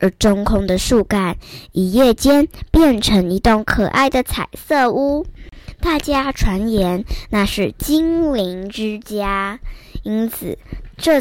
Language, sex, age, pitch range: Chinese, male, 10-29, 190-275 Hz